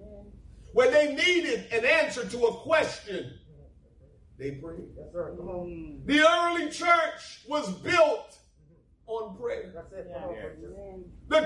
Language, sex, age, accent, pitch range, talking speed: English, male, 40-59, American, 300-385 Hz, 95 wpm